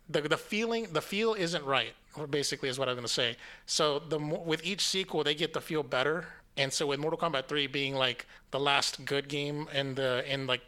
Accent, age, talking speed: American, 30-49, 220 wpm